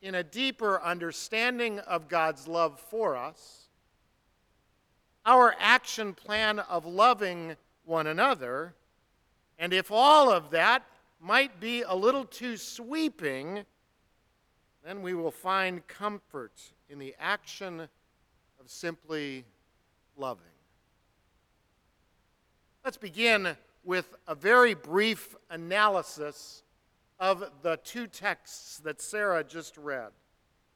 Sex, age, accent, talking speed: male, 50-69, American, 105 wpm